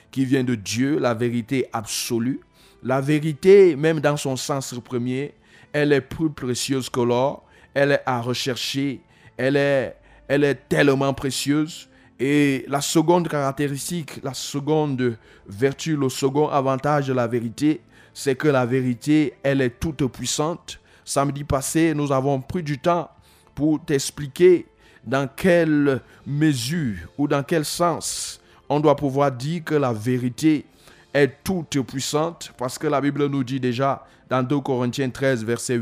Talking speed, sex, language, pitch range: 150 wpm, male, French, 125-155 Hz